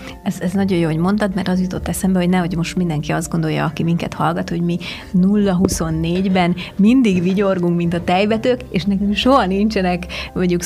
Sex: female